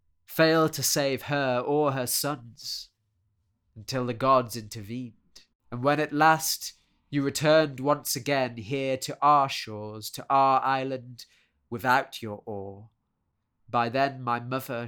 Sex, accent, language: male, British, English